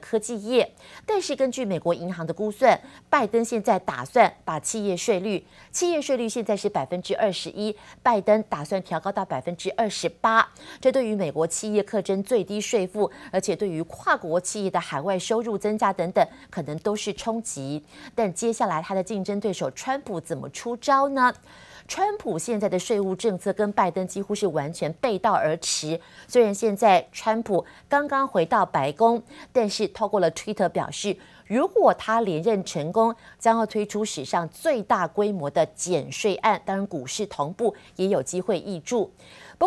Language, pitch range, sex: Chinese, 180-230 Hz, female